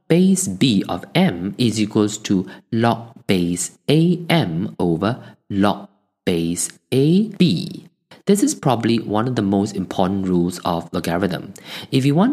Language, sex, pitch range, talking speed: English, male, 95-140 Hz, 135 wpm